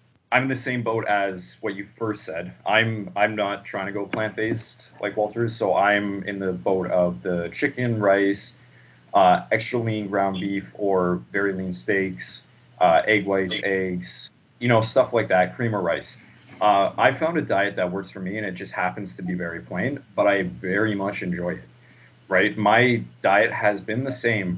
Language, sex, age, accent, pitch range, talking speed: English, male, 30-49, American, 95-120 Hz, 195 wpm